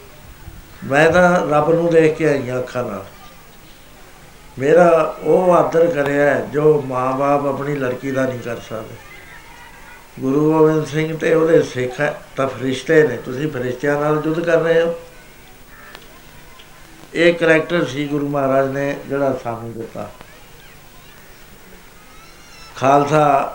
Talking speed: 120 wpm